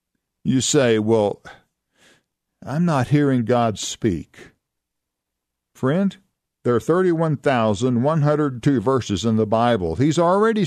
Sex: male